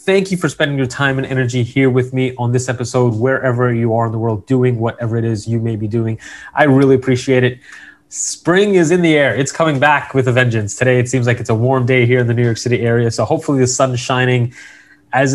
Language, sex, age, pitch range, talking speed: English, male, 20-39, 120-150 Hz, 250 wpm